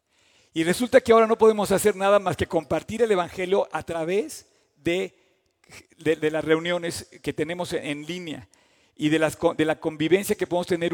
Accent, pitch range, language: Mexican, 155-190 Hz, Spanish